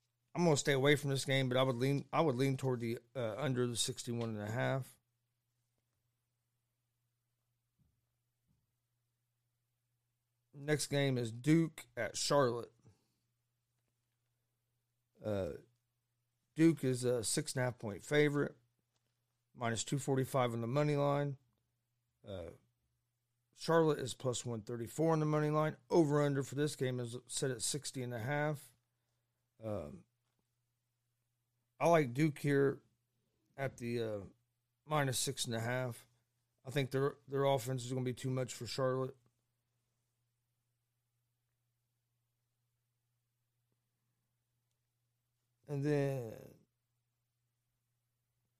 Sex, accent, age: male, American, 40-59